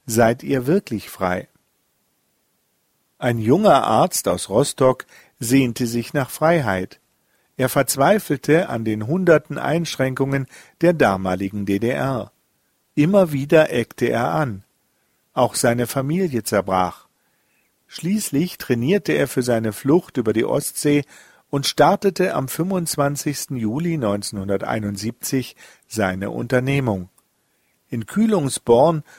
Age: 50-69